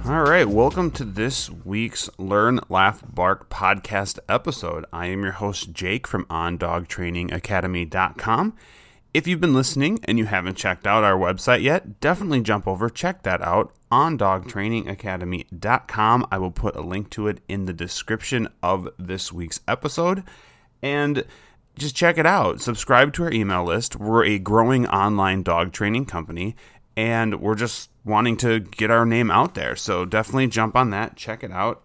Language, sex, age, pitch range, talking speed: English, male, 30-49, 95-120 Hz, 160 wpm